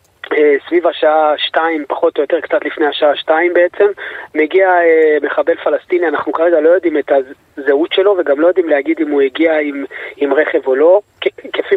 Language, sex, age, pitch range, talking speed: Hebrew, male, 30-49, 145-190 Hz, 185 wpm